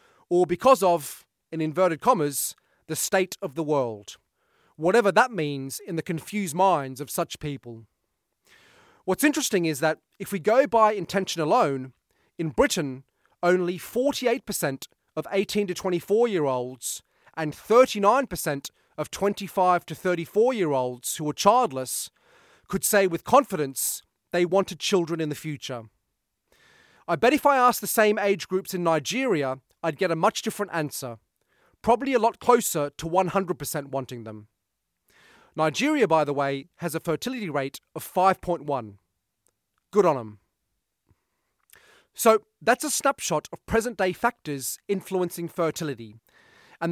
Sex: male